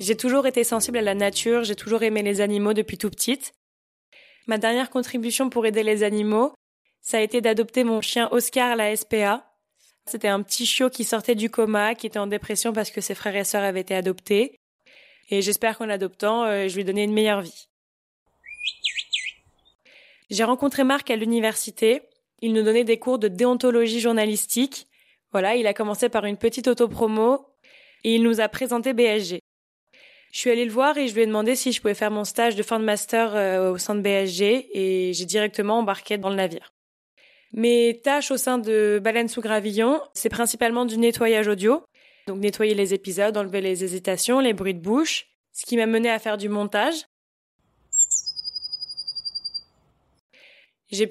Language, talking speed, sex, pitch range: French, 180 wpm, female, 205-235 Hz